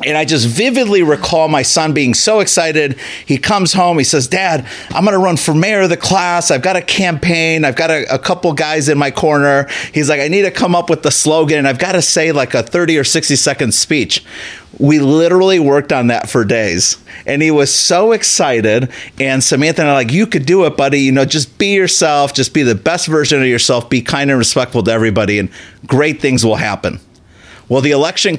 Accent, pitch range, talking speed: American, 120-160 Hz, 230 wpm